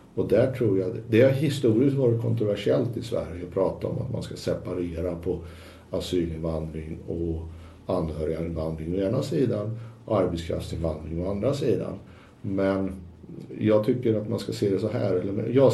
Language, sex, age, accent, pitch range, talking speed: Swedish, male, 60-79, Norwegian, 85-115 Hz, 160 wpm